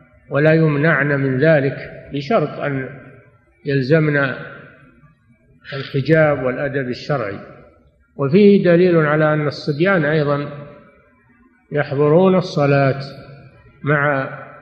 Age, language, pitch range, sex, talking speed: 50-69, Arabic, 135-160 Hz, male, 80 wpm